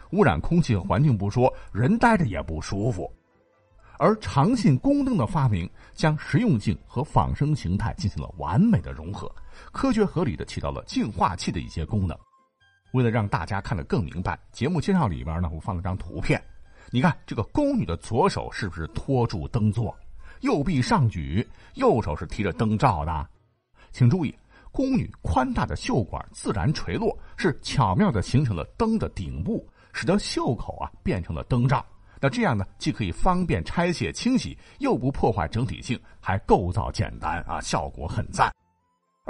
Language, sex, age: Chinese, male, 50-69